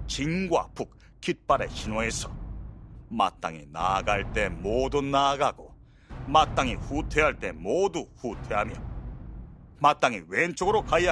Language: Korean